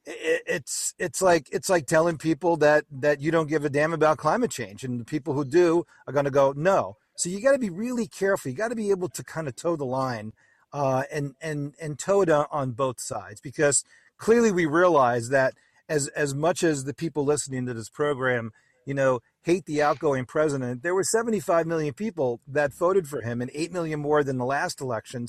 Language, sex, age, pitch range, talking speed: English, male, 40-59, 130-160 Hz, 220 wpm